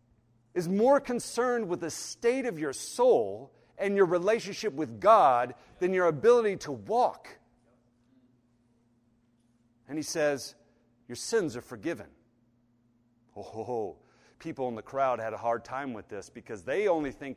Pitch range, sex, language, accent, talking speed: 120-155 Hz, male, English, American, 140 wpm